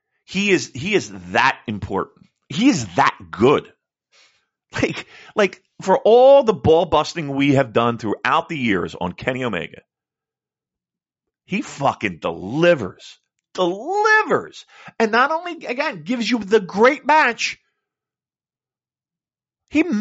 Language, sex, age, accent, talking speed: English, male, 50-69, American, 120 wpm